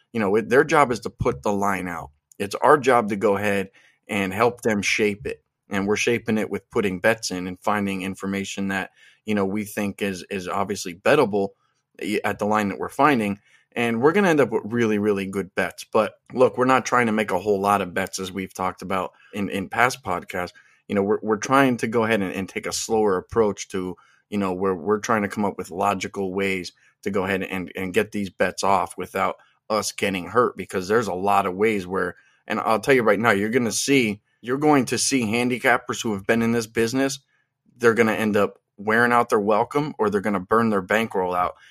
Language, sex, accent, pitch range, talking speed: English, male, American, 95-115 Hz, 235 wpm